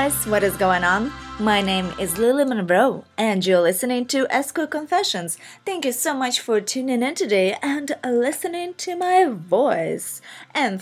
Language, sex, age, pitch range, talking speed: English, female, 20-39, 185-255 Hz, 160 wpm